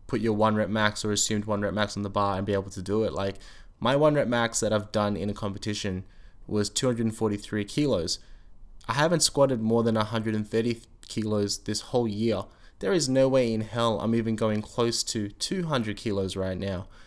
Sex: male